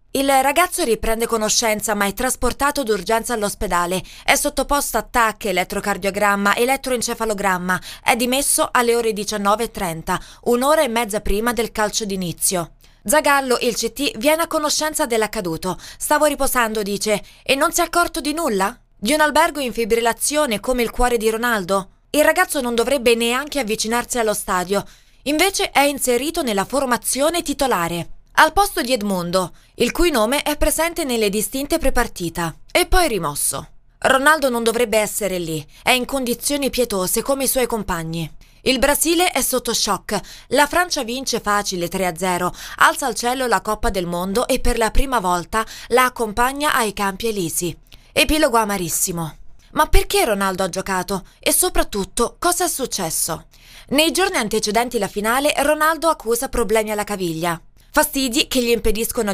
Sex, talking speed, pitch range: female, 150 wpm, 195-275 Hz